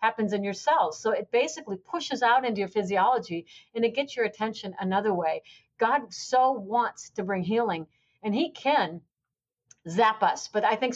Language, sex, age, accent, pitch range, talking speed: English, female, 50-69, American, 195-240 Hz, 180 wpm